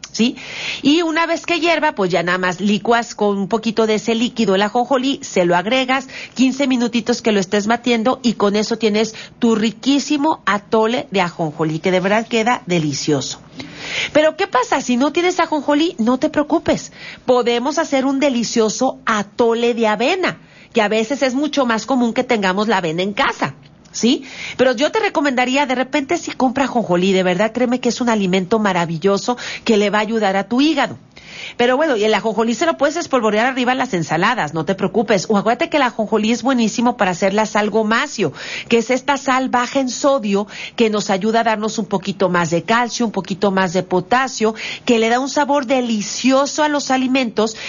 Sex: female